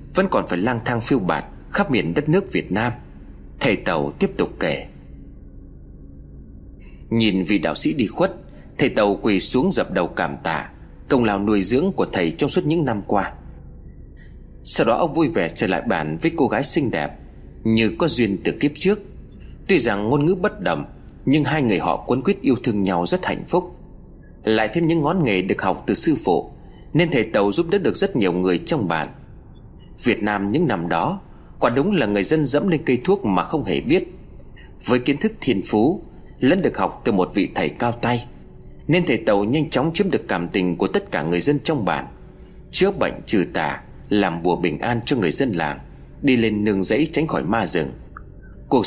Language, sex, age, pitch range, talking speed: Vietnamese, male, 30-49, 85-145 Hz, 210 wpm